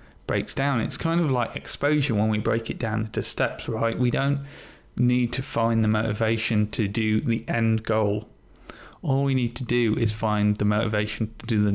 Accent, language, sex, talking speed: British, English, male, 200 wpm